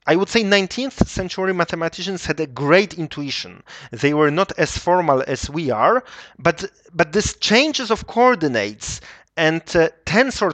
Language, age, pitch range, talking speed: English, 30-49, 150-220 Hz, 155 wpm